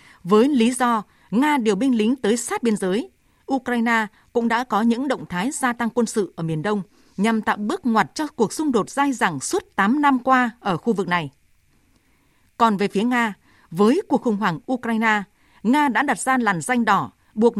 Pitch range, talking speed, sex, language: 200-255 Hz, 205 wpm, female, Vietnamese